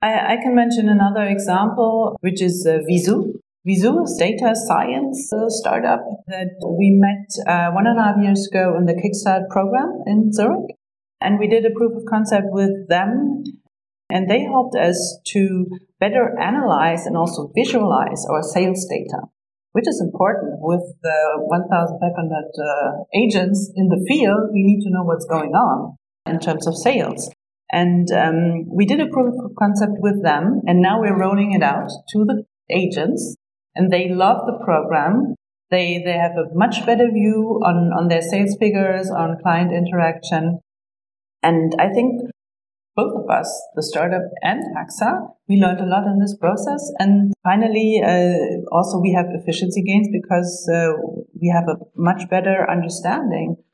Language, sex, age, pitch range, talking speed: English, female, 40-59, 175-215 Hz, 165 wpm